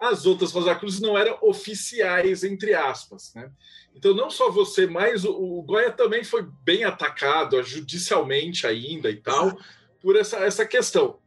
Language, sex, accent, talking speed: Portuguese, male, Brazilian, 160 wpm